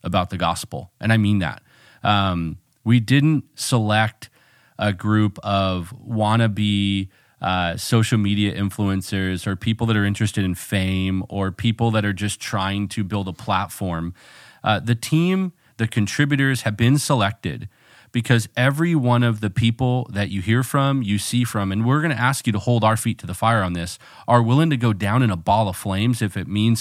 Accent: American